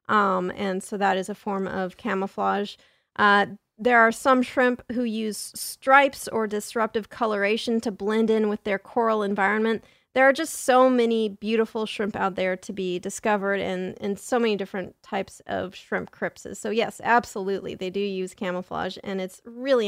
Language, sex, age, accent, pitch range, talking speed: English, female, 30-49, American, 205-260 Hz, 175 wpm